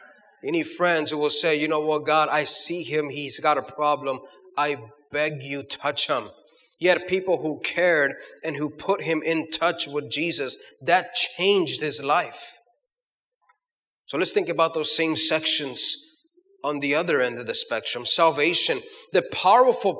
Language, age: English, 30-49